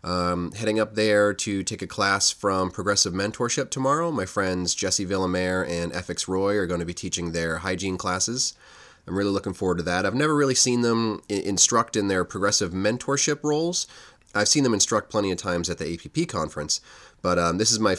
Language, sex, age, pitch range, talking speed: English, male, 30-49, 90-110 Hz, 205 wpm